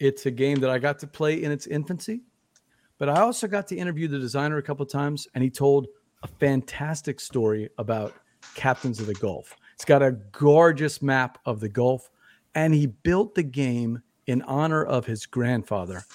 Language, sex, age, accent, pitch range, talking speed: English, male, 40-59, American, 125-150 Hz, 195 wpm